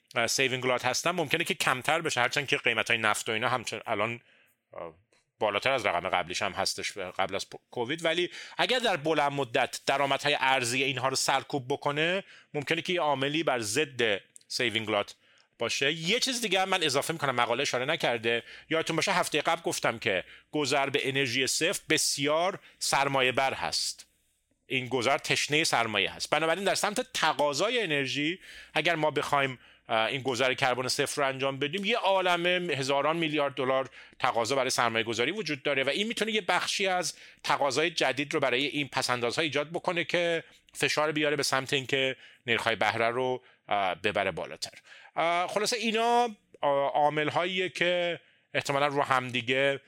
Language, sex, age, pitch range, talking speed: Persian, male, 30-49, 130-160 Hz, 155 wpm